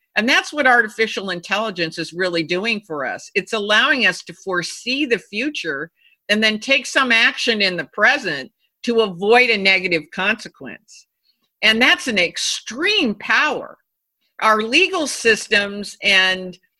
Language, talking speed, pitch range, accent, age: English, 140 wpm, 180-230 Hz, American, 50-69